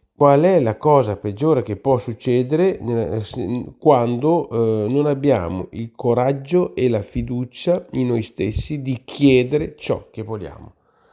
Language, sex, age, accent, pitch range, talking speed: Italian, male, 40-59, native, 100-130 Hz, 130 wpm